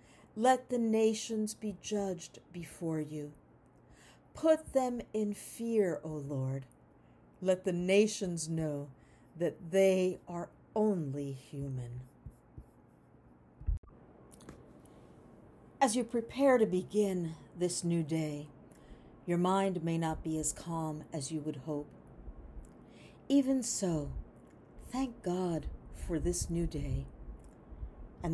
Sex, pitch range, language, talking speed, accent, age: female, 145-210 Hz, English, 105 wpm, American, 50-69